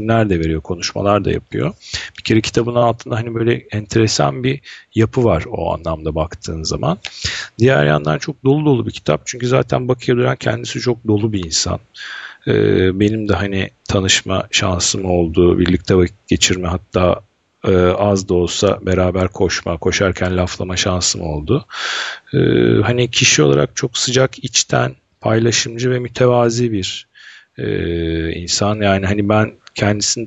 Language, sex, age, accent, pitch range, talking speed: Turkish, male, 40-59, native, 90-115 Hz, 145 wpm